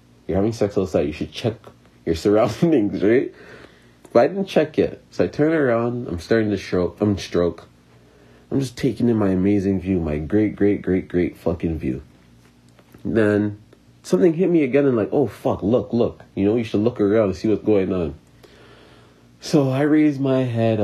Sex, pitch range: male, 80-120 Hz